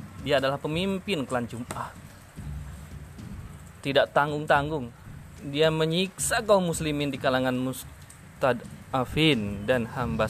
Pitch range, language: 100-165 Hz, Indonesian